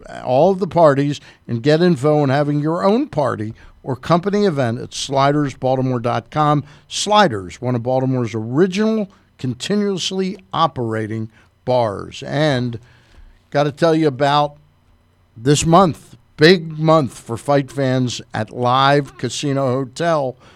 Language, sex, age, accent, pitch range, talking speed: English, male, 50-69, American, 130-175 Hz, 125 wpm